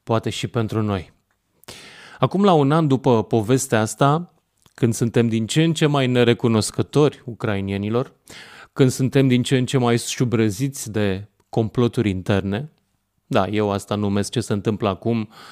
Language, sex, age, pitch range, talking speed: Romanian, male, 30-49, 105-135 Hz, 150 wpm